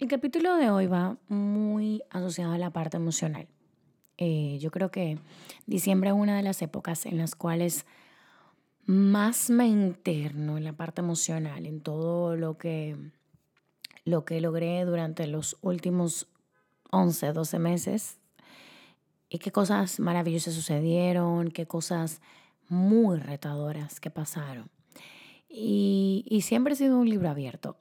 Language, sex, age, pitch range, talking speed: Spanish, female, 20-39, 165-220 Hz, 135 wpm